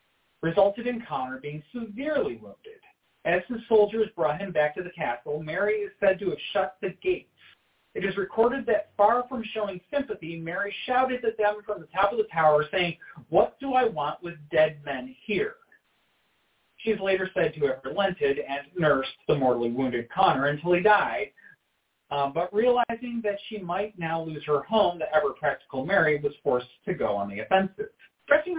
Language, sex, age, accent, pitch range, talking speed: English, male, 40-59, American, 155-220 Hz, 185 wpm